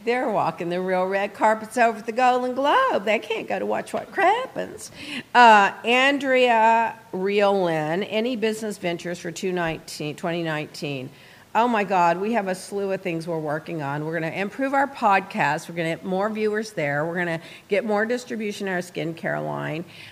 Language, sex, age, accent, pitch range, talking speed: English, female, 50-69, American, 165-205 Hz, 180 wpm